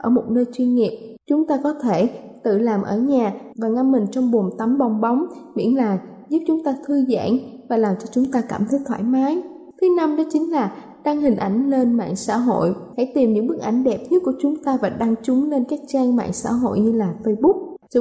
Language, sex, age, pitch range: Thai, female, 10-29, 225-285 Hz